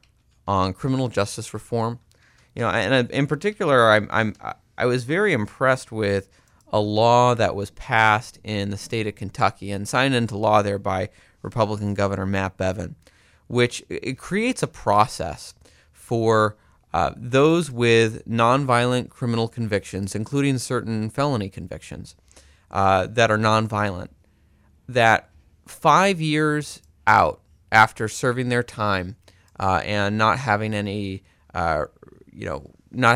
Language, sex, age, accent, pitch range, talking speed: English, male, 30-49, American, 95-120 Hz, 130 wpm